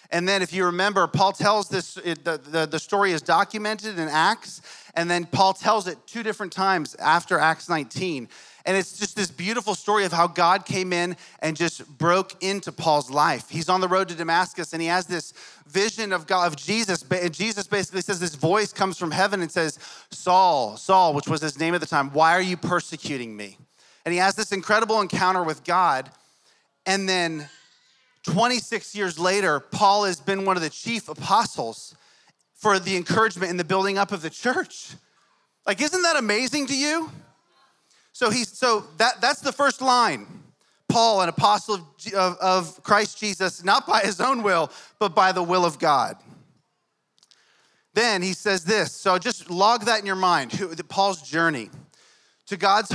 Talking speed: 185 wpm